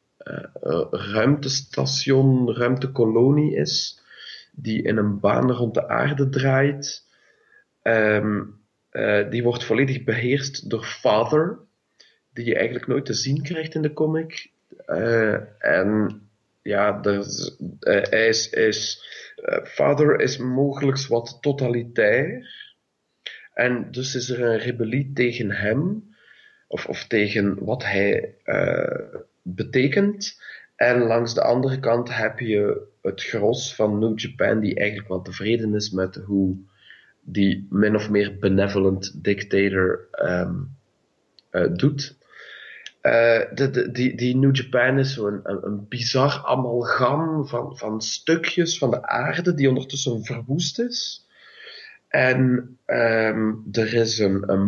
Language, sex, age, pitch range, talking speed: English, male, 40-59, 110-150 Hz, 125 wpm